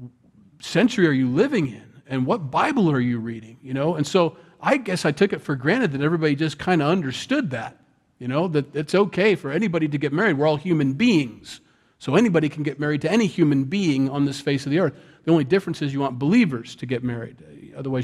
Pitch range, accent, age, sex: 125-160 Hz, American, 40-59, male